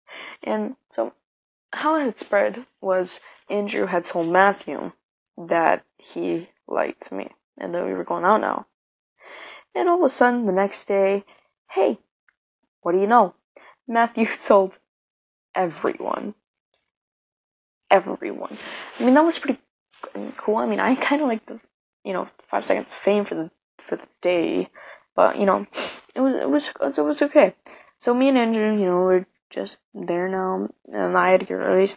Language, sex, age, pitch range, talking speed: English, female, 10-29, 180-240 Hz, 170 wpm